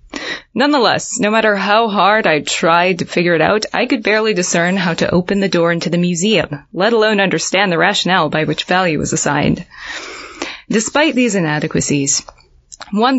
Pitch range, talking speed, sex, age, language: 155-195 Hz, 170 wpm, female, 20-39, English